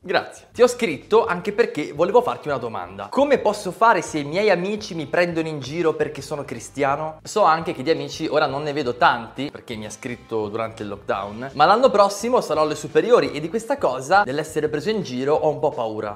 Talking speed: 220 wpm